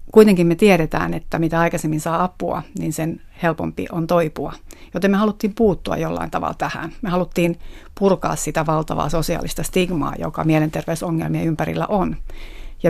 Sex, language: female, Finnish